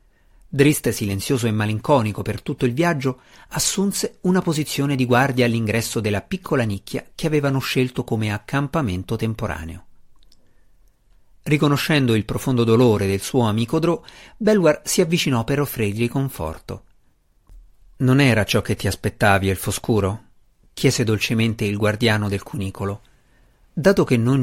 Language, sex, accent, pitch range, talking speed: Italian, male, native, 105-140 Hz, 130 wpm